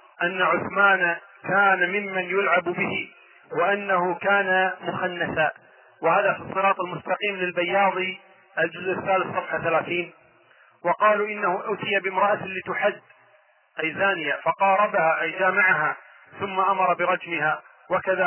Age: 40-59